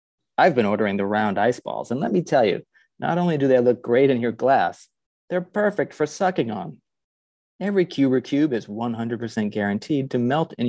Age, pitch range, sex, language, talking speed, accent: 40-59, 115-170 Hz, male, English, 195 wpm, American